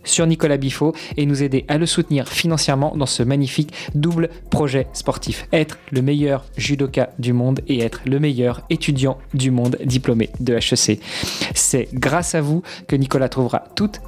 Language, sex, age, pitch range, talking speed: French, male, 20-39, 130-155 Hz, 170 wpm